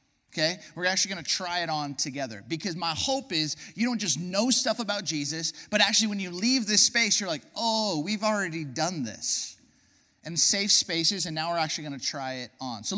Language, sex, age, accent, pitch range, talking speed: English, male, 30-49, American, 155-220 Hz, 215 wpm